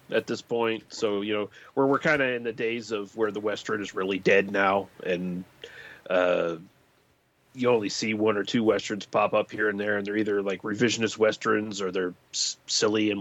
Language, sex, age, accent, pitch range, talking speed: English, male, 30-49, American, 105-130 Hz, 210 wpm